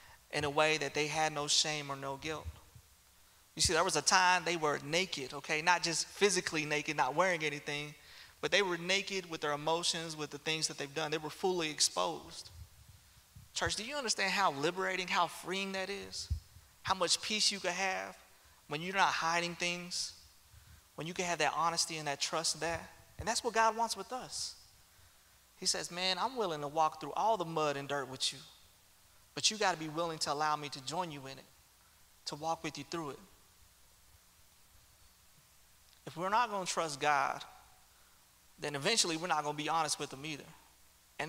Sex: male